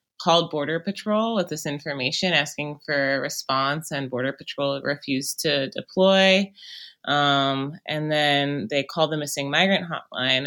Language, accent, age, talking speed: English, American, 20-39, 145 wpm